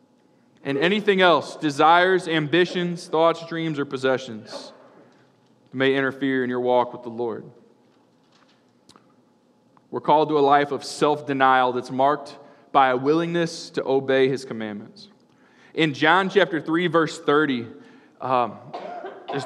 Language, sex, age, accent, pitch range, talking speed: English, male, 20-39, American, 130-180 Hz, 125 wpm